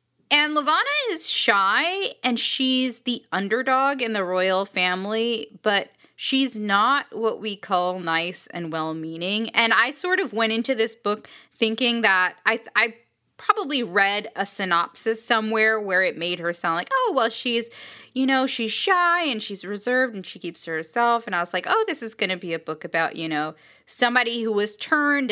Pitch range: 185-260 Hz